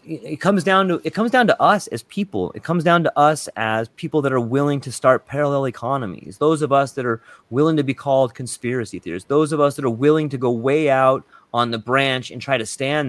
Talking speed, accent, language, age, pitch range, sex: 245 wpm, American, English, 30-49, 120-155 Hz, male